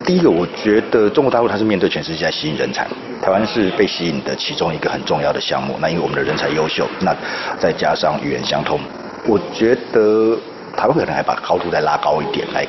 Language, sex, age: Chinese, male, 40-59